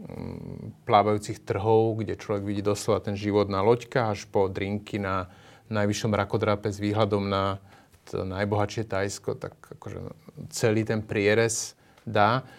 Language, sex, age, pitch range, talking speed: Slovak, male, 30-49, 100-115 Hz, 135 wpm